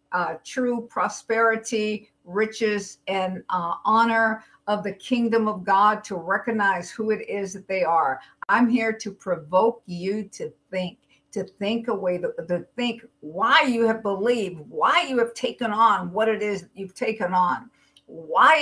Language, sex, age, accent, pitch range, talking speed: English, female, 50-69, American, 195-235 Hz, 160 wpm